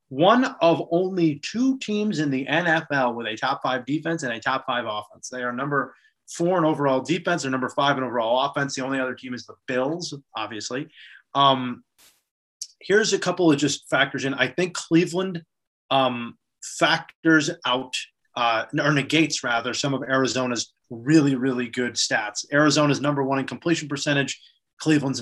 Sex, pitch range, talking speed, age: male, 120-150 Hz, 170 wpm, 30-49